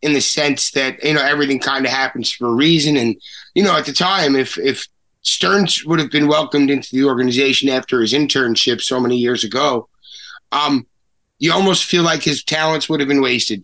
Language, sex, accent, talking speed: English, male, American, 205 wpm